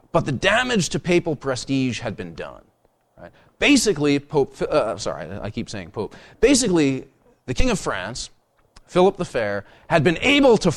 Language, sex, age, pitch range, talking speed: English, male, 30-49, 105-170 Hz, 160 wpm